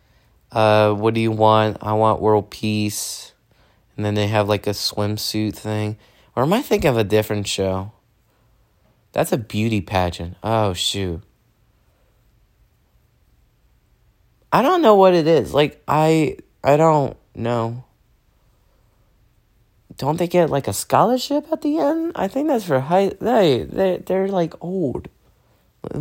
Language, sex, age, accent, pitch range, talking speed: English, male, 20-39, American, 110-170 Hz, 140 wpm